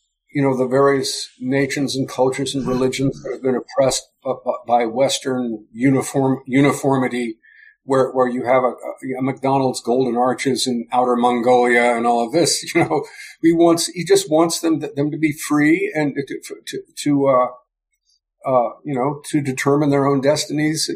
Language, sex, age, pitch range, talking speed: English, male, 50-69, 135-195 Hz, 165 wpm